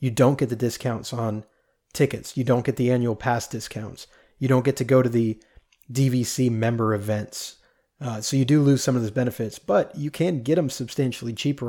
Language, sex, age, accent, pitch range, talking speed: English, male, 30-49, American, 115-140 Hz, 205 wpm